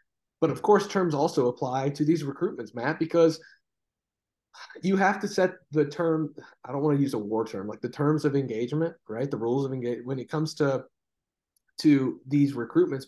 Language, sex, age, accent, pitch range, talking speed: English, male, 30-49, American, 135-175 Hz, 195 wpm